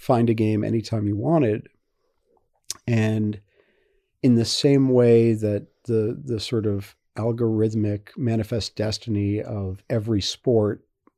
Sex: male